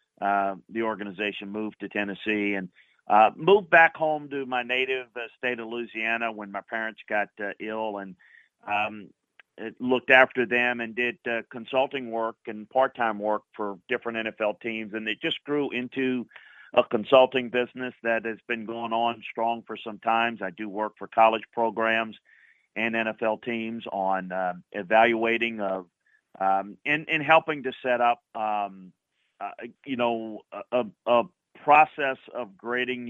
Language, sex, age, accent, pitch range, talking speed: English, male, 40-59, American, 110-120 Hz, 160 wpm